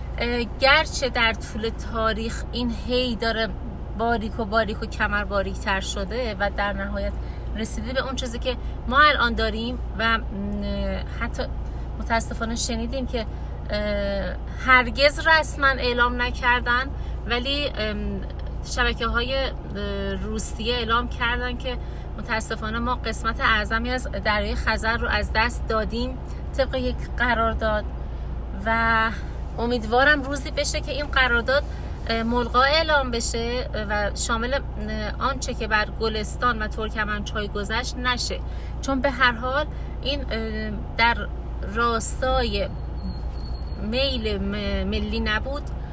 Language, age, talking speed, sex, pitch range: Persian, 30-49, 120 wpm, female, 210-245 Hz